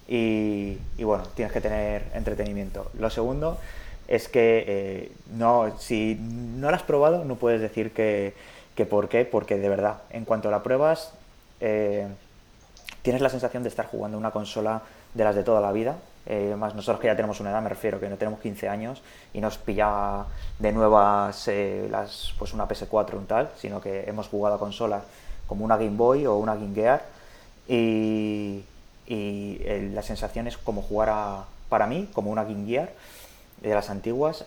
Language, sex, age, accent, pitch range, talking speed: Spanish, male, 20-39, Spanish, 100-115 Hz, 185 wpm